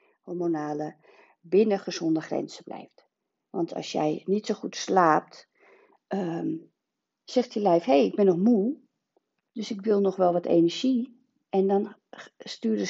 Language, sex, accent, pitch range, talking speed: Dutch, female, Dutch, 180-240 Hz, 150 wpm